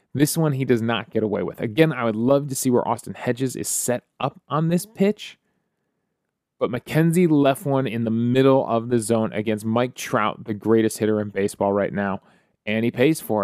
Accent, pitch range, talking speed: American, 110-150 Hz, 210 wpm